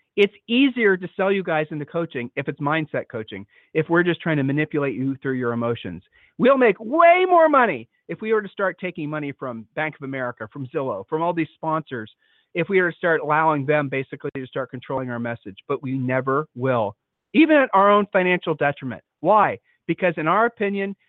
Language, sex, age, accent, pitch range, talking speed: English, male, 40-59, American, 140-200 Hz, 205 wpm